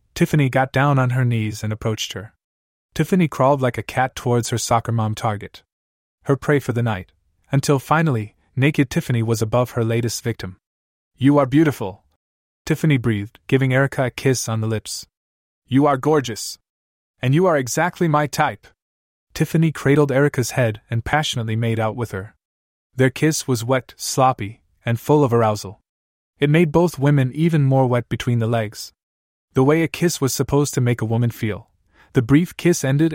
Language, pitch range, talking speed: English, 100-145 Hz, 175 wpm